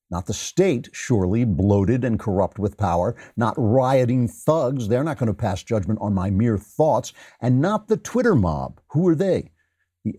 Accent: American